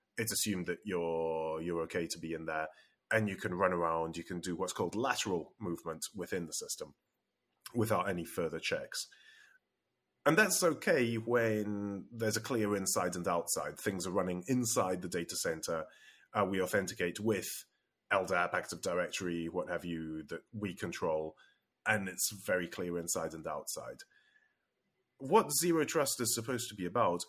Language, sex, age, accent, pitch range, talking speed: English, male, 30-49, British, 85-125 Hz, 165 wpm